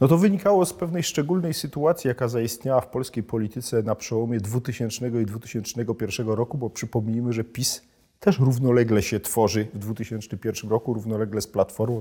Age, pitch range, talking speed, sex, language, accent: 40-59, 110-135 Hz, 160 wpm, male, Polish, native